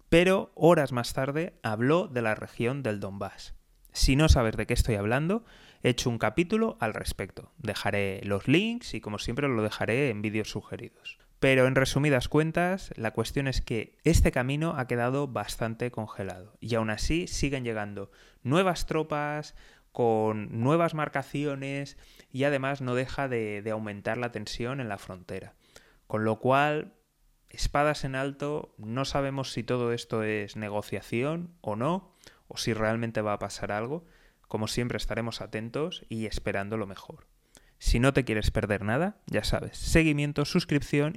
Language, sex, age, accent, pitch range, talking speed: Spanish, male, 20-39, Spanish, 110-145 Hz, 160 wpm